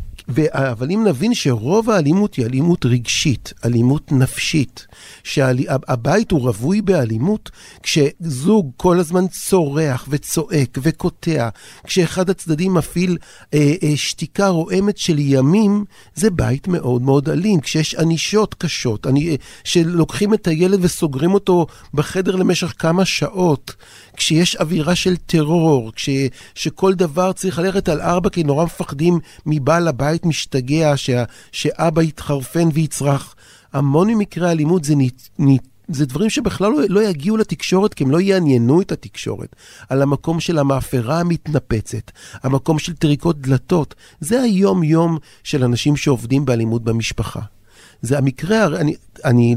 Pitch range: 130-180 Hz